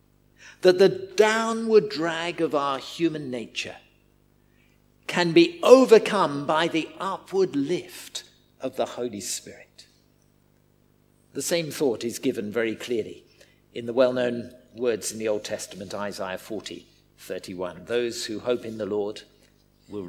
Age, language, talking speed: 50-69, English, 130 wpm